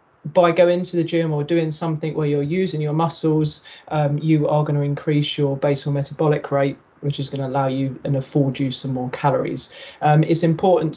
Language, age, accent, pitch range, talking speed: English, 30-49, British, 145-165 Hz, 210 wpm